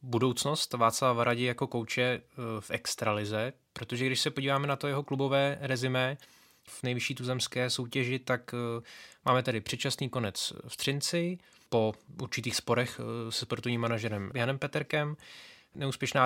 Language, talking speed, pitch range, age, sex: Czech, 130 wpm, 115-135 Hz, 20-39, male